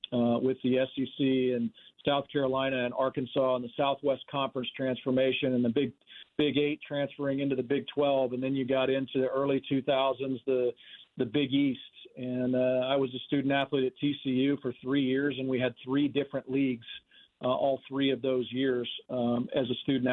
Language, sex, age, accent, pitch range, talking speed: English, male, 40-59, American, 130-140 Hz, 190 wpm